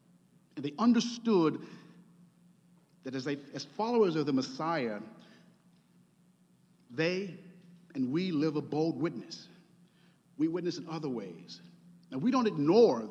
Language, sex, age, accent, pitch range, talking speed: English, male, 50-69, American, 155-195 Hz, 125 wpm